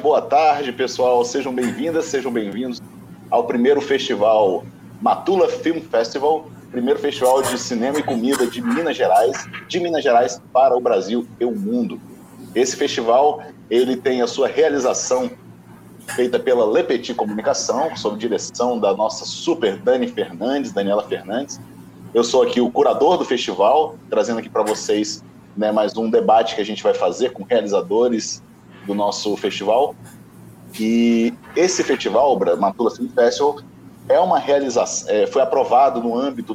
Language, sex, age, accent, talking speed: Portuguese, male, 40-59, Brazilian, 145 wpm